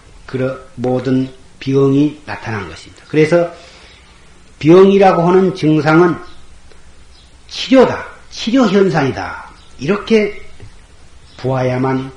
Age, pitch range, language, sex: 40-59, 100-145 Hz, Korean, male